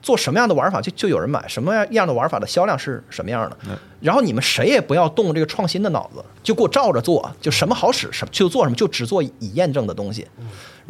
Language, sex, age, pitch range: Chinese, male, 30-49, 140-210 Hz